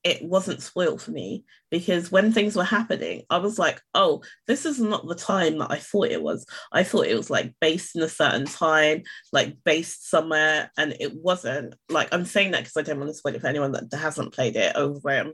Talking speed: 235 wpm